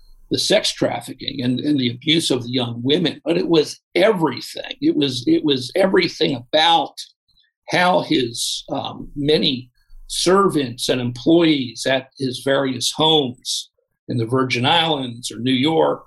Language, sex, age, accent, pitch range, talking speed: English, male, 50-69, American, 125-155 Hz, 145 wpm